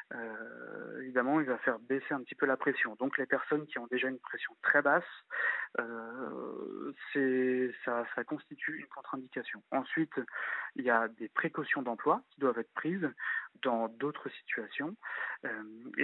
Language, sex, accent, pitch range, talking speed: French, male, French, 125-145 Hz, 155 wpm